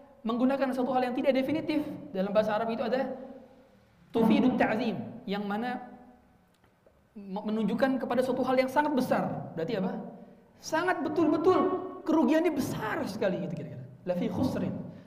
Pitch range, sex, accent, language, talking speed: 200-270 Hz, male, native, Indonesian, 125 wpm